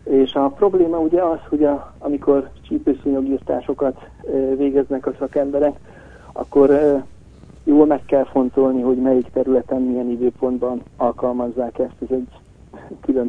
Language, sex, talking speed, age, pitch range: Hungarian, male, 120 wpm, 50-69, 125-140 Hz